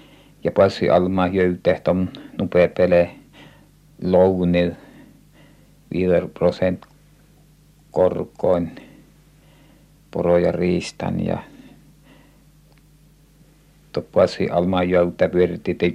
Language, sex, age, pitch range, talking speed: Finnish, male, 50-69, 90-150 Hz, 60 wpm